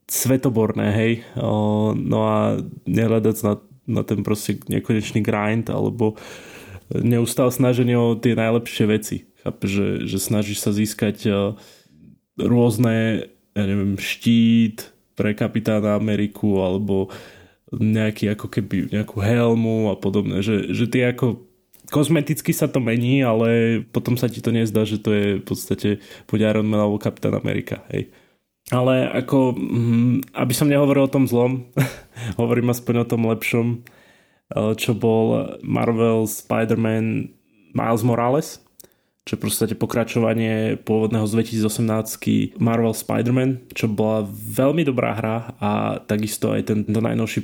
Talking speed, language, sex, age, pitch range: 130 wpm, Slovak, male, 20-39, 105-120 Hz